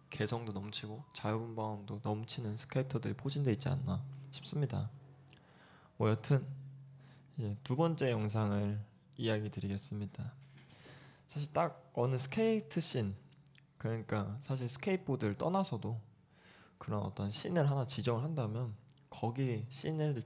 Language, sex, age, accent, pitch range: Korean, male, 20-39, native, 110-140 Hz